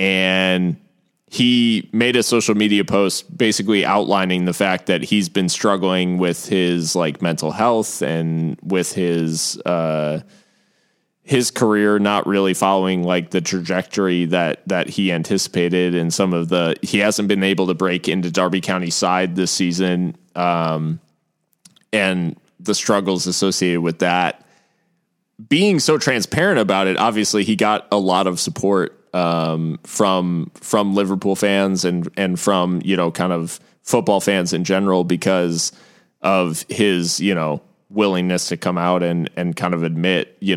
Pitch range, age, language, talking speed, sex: 90-100 Hz, 20-39, English, 150 wpm, male